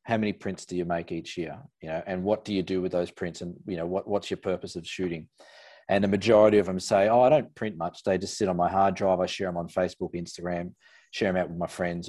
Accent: Australian